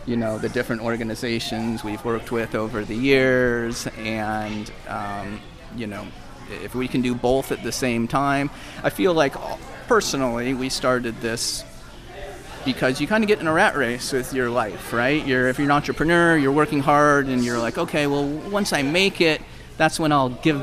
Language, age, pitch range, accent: English, 30-49, 115-135 Hz, American